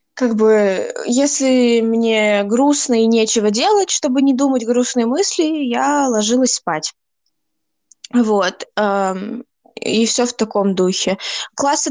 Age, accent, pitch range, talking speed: 20-39, native, 205-245 Hz, 115 wpm